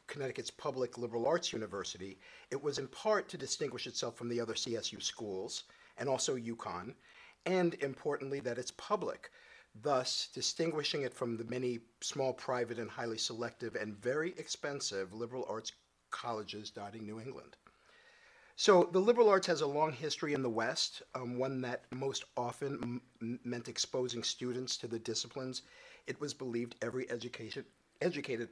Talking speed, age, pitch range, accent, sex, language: 150 wpm, 50-69, 115-155 Hz, American, male, English